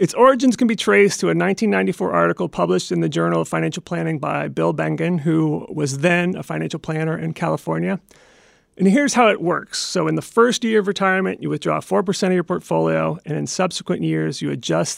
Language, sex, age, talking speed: English, male, 30-49, 205 wpm